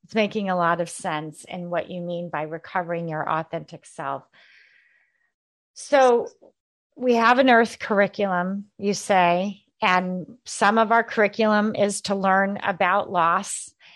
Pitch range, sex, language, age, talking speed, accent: 175-225 Hz, female, English, 40-59, 140 wpm, American